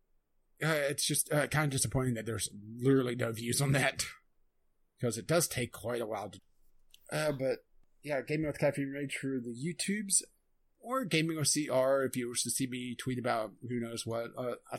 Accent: American